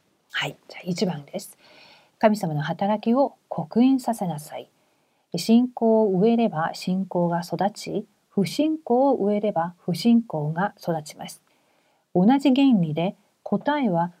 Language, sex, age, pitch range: Korean, female, 40-59, 180-240 Hz